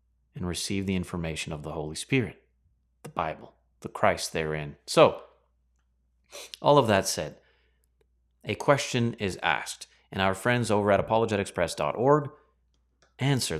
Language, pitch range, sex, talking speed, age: English, 75-110 Hz, male, 130 wpm, 30-49